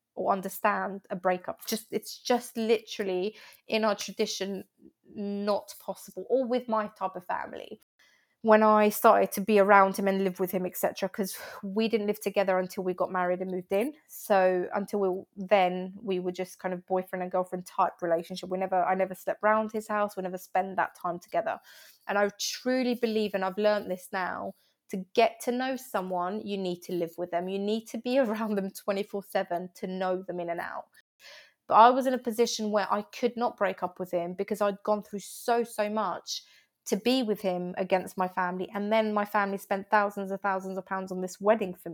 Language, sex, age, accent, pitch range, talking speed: English, female, 20-39, British, 185-215 Hz, 210 wpm